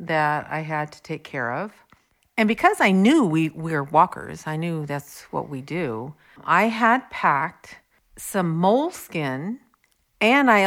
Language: English